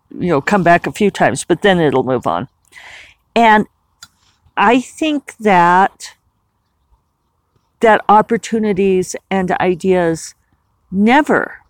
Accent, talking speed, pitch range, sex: American, 110 wpm, 165-210 Hz, female